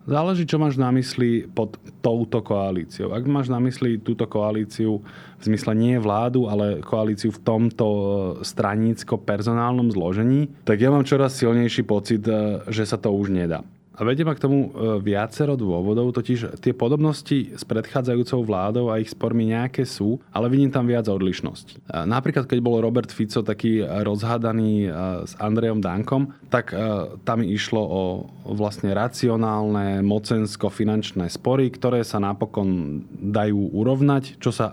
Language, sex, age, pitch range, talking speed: Slovak, male, 20-39, 105-120 Hz, 145 wpm